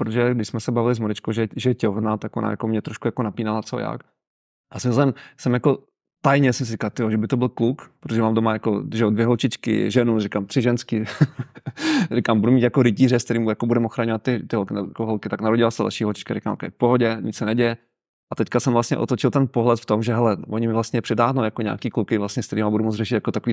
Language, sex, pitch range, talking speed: Czech, male, 110-120 Hz, 250 wpm